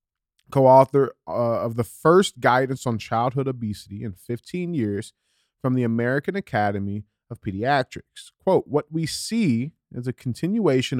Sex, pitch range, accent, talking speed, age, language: male, 105-135 Hz, American, 130 wpm, 30-49, English